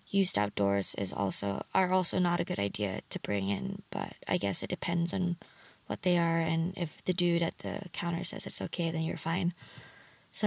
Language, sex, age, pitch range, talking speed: English, female, 20-39, 170-200 Hz, 205 wpm